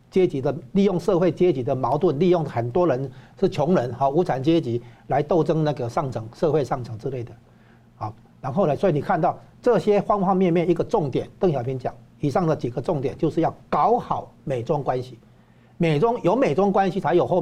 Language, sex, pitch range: Chinese, male, 125-185 Hz